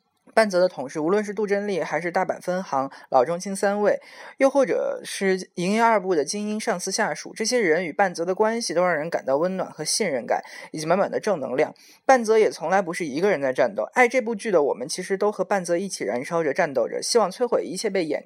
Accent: native